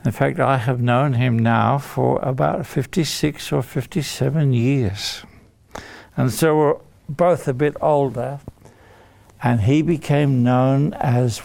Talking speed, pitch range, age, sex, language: 130 wpm, 125-180 Hz, 60-79, male, English